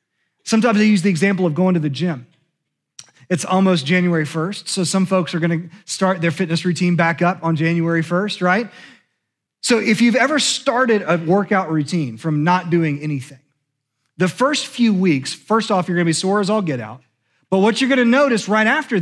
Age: 30-49